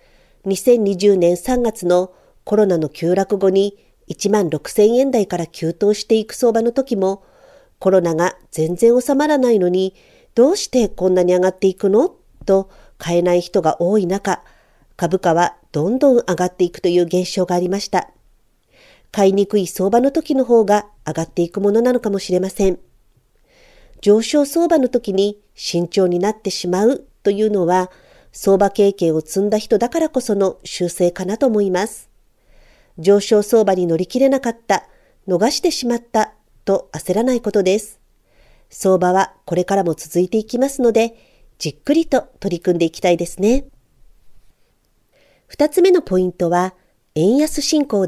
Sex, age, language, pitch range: female, 50-69, Japanese, 180-235 Hz